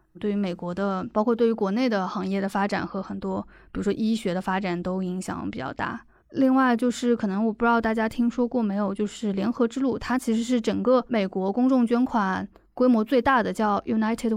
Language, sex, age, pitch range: Chinese, female, 20-39, 195-235 Hz